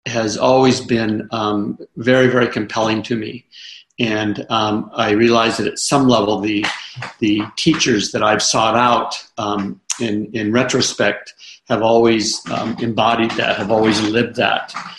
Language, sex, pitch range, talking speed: English, male, 110-125 Hz, 150 wpm